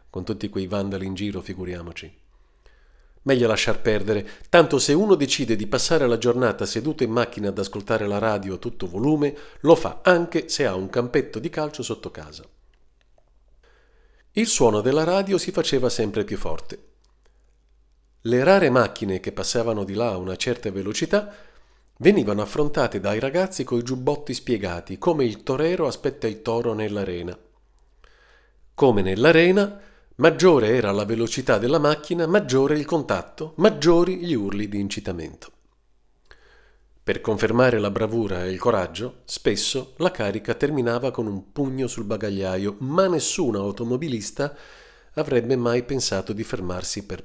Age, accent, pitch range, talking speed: 50-69, native, 95-135 Hz, 145 wpm